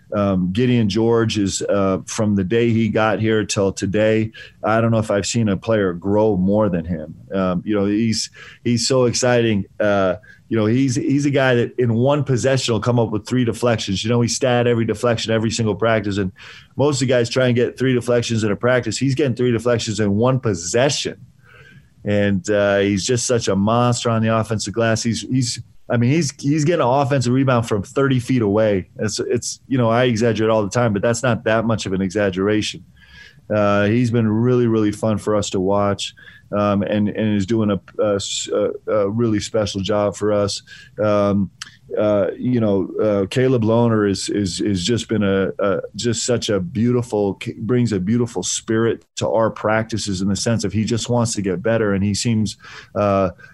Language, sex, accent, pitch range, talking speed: English, male, American, 100-120 Hz, 205 wpm